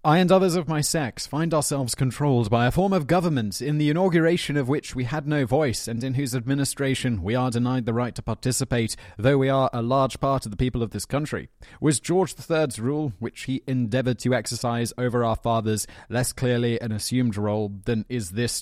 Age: 30-49